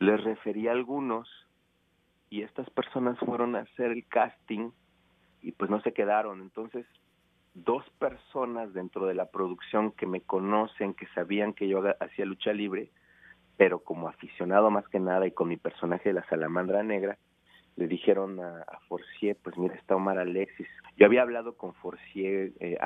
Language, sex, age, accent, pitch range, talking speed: Spanish, male, 40-59, Mexican, 90-110 Hz, 170 wpm